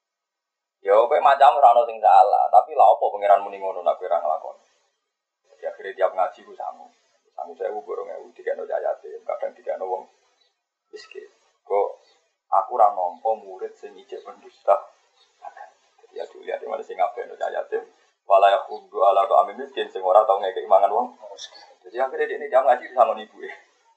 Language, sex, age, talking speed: Indonesian, male, 20-39, 60 wpm